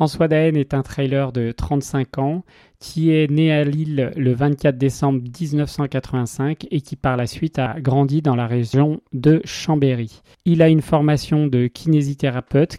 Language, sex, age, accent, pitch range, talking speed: French, male, 30-49, French, 130-155 Hz, 165 wpm